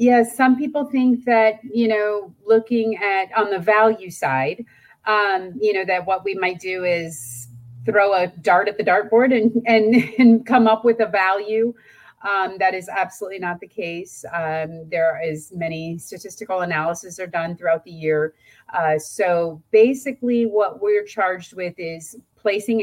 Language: English